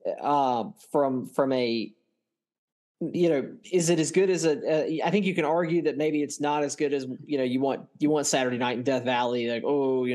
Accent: American